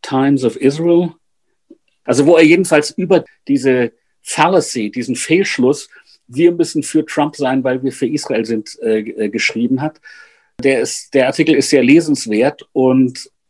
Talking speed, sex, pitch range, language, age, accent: 140 wpm, male, 125-160 Hz, German, 50-69, German